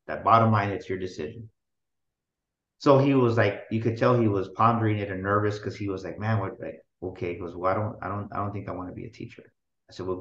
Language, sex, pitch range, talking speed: English, male, 105-125 Hz, 245 wpm